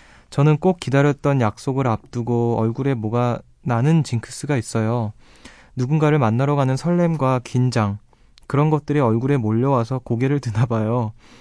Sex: male